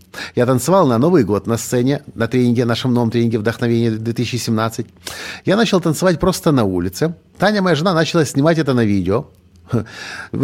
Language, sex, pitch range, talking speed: Russian, male, 100-145 Hz, 160 wpm